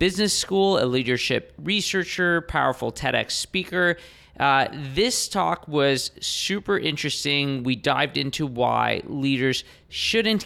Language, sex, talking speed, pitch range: English, male, 115 wpm, 130-170 Hz